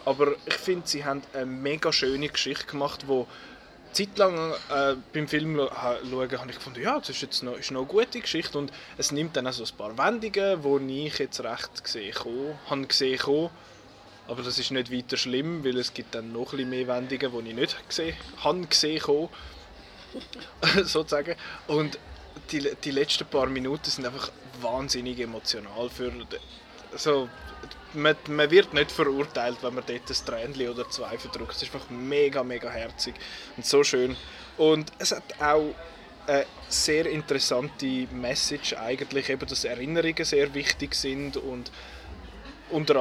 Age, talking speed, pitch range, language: 20-39, 165 wpm, 125-150 Hz, German